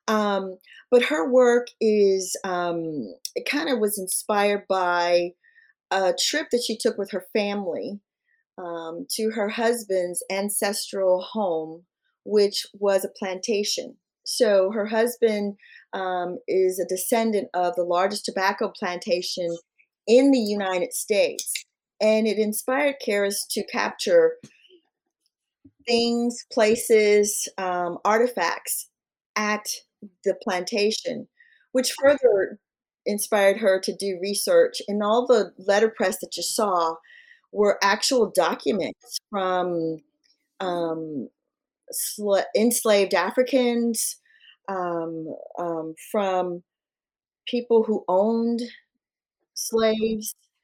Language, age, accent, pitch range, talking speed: English, 40-59, American, 185-240 Hz, 105 wpm